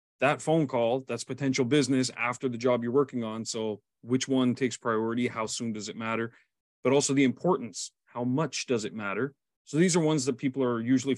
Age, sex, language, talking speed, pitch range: 30-49, male, English, 210 wpm, 115-140 Hz